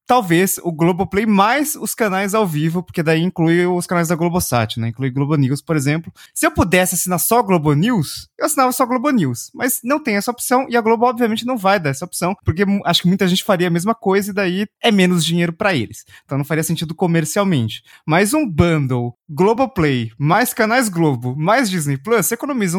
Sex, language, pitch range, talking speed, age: male, Portuguese, 135-195 Hz, 220 wpm, 20-39